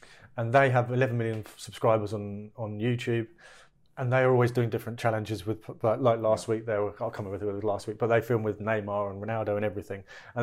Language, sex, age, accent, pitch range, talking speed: English, male, 30-49, British, 110-130 Hz, 225 wpm